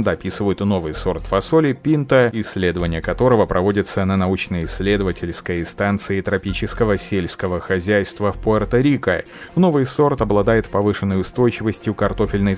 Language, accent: Russian, native